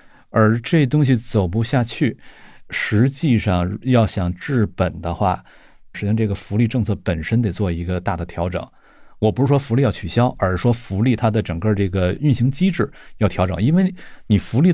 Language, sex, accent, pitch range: Chinese, male, native, 95-115 Hz